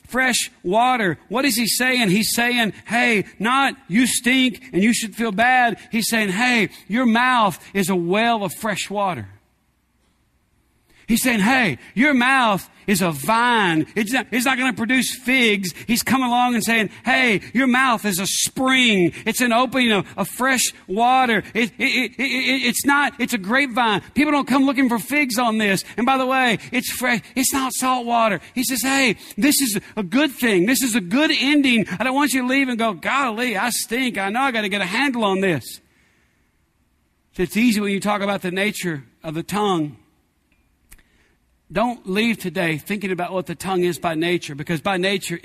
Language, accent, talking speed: English, American, 195 wpm